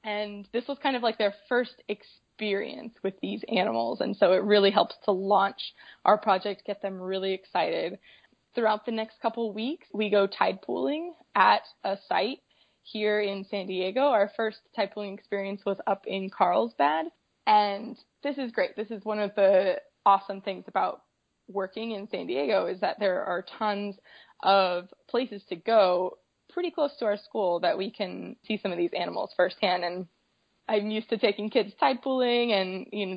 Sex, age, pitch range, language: female, 20-39, 195-230 Hz, English